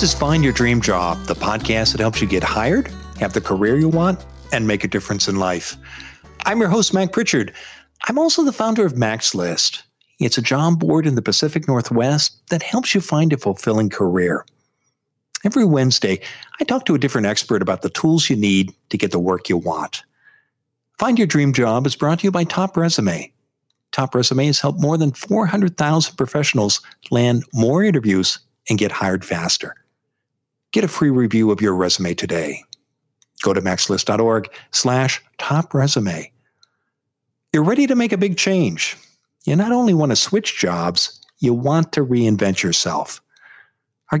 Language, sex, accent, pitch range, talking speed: English, male, American, 110-180 Hz, 175 wpm